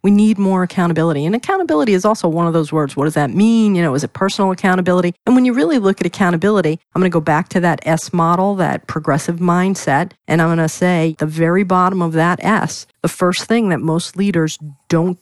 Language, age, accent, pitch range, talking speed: English, 40-59, American, 160-195 Hz, 235 wpm